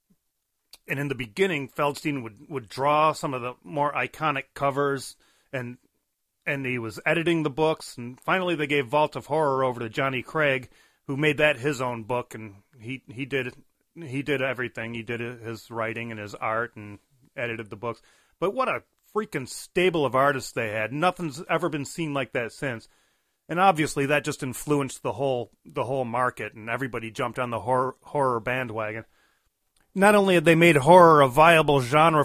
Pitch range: 125-155 Hz